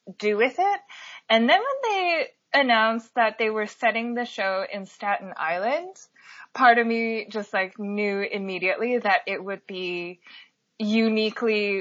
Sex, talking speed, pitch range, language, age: female, 145 wpm, 205-300 Hz, English, 20-39